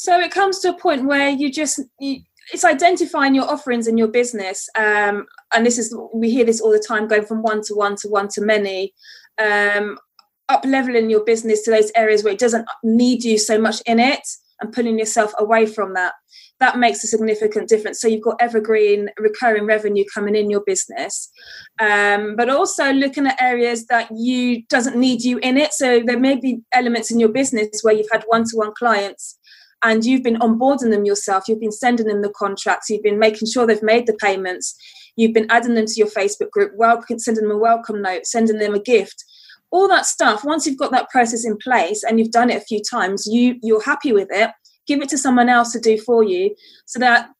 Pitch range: 215-255 Hz